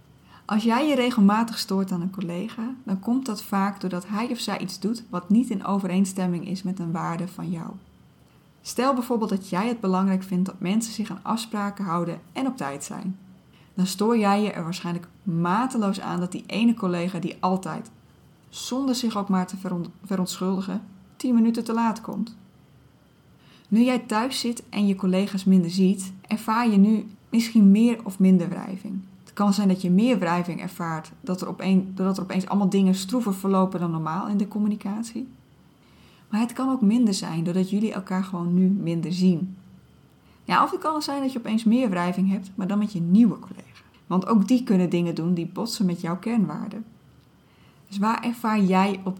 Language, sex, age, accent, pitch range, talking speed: Dutch, female, 20-39, Dutch, 185-220 Hz, 185 wpm